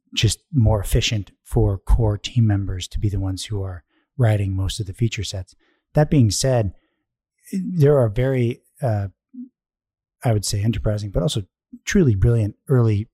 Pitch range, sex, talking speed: 100-120 Hz, male, 160 wpm